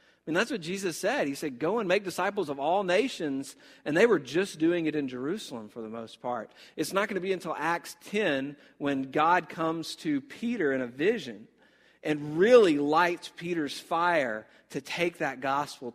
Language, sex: English, male